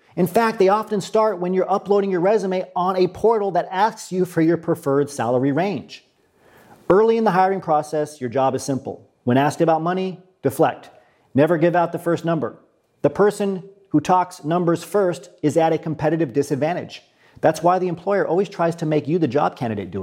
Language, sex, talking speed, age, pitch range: English, male, 195 wpm, 40-59, 140-180 Hz